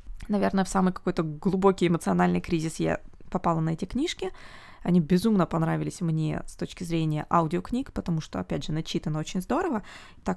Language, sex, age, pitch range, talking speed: Russian, female, 20-39, 165-205 Hz, 160 wpm